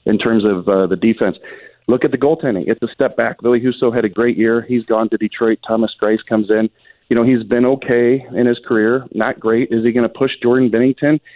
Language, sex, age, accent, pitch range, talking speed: English, male, 40-59, American, 110-130 Hz, 240 wpm